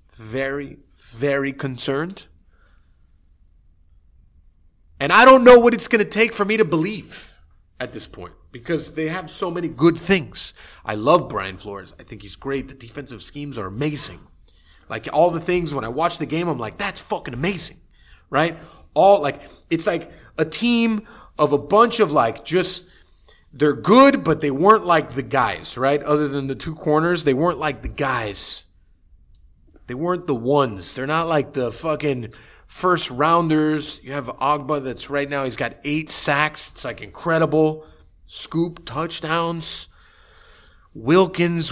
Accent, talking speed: American, 160 wpm